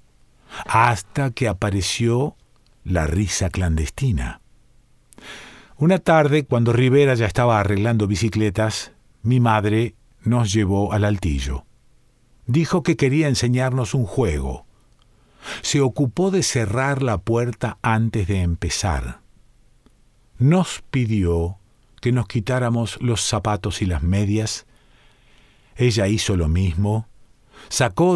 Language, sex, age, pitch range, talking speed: Spanish, male, 50-69, 100-130 Hz, 105 wpm